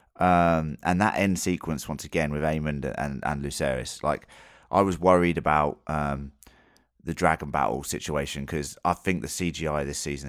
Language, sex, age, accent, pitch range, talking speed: English, male, 30-49, British, 75-90 Hz, 175 wpm